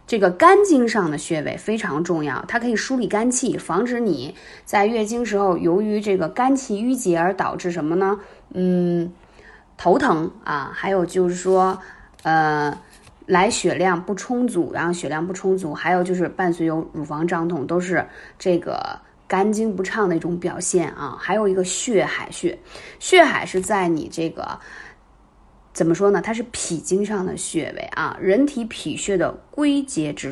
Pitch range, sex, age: 180-250 Hz, female, 20-39